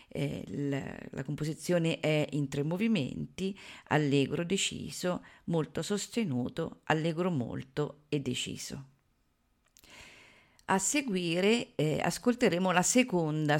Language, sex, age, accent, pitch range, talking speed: Italian, female, 50-69, native, 140-175 Hz, 90 wpm